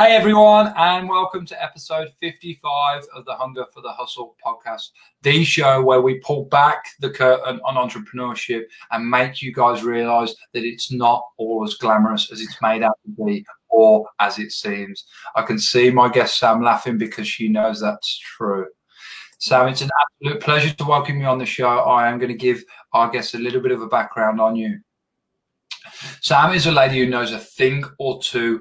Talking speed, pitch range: 195 wpm, 115-150 Hz